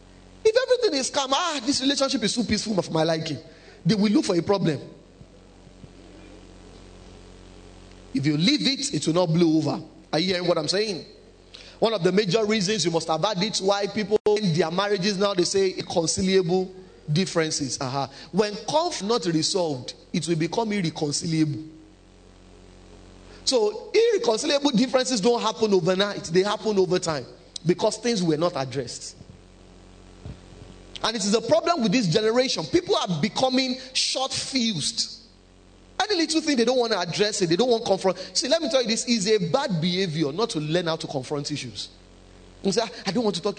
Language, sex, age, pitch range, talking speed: English, male, 30-49, 155-245 Hz, 175 wpm